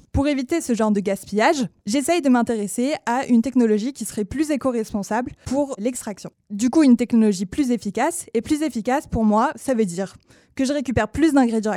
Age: 20-39